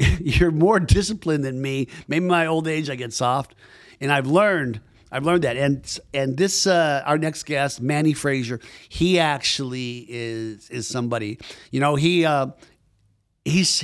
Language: English